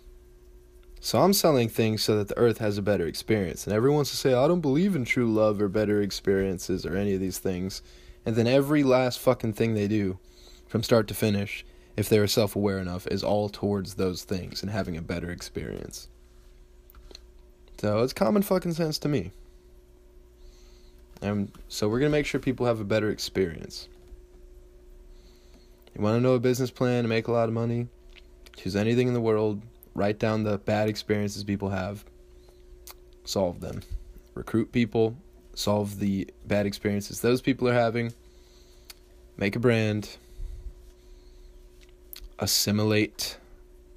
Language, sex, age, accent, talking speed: English, male, 20-39, American, 160 wpm